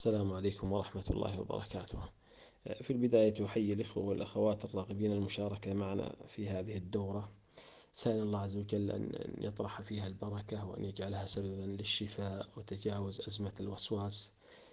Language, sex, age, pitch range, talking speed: Arabic, male, 30-49, 100-110 Hz, 125 wpm